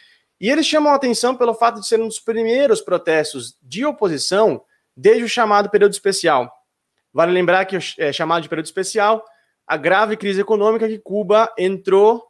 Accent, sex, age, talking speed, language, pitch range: Brazilian, male, 20-39, 170 wpm, Portuguese, 155-220 Hz